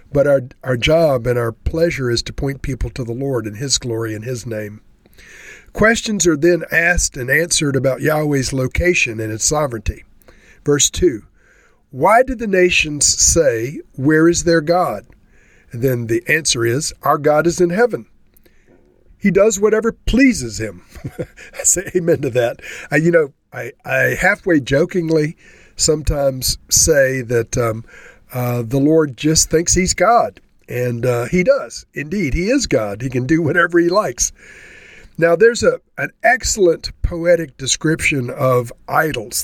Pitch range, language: 125-175 Hz, English